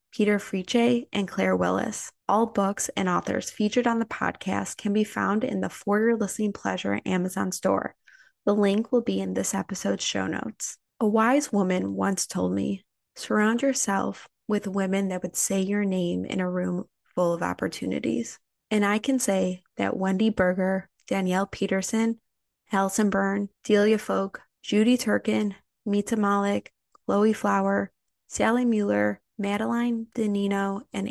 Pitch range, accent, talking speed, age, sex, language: 190-215 Hz, American, 150 wpm, 20-39, female, English